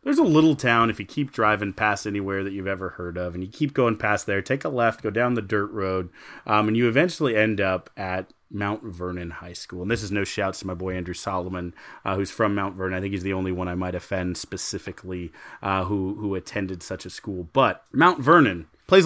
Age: 30-49